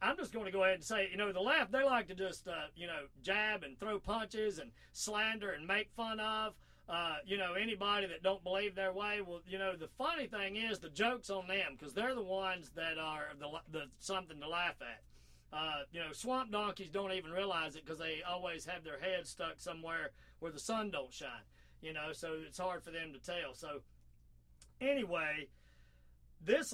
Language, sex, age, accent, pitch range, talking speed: English, male, 40-59, American, 155-200 Hz, 215 wpm